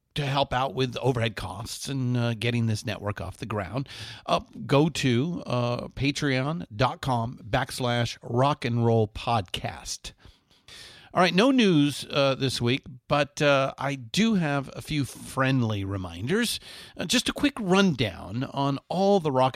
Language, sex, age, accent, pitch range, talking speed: English, male, 50-69, American, 110-150 Hz, 150 wpm